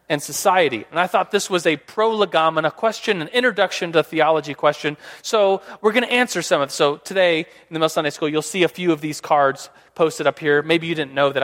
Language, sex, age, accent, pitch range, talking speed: English, male, 30-49, American, 155-215 Hz, 235 wpm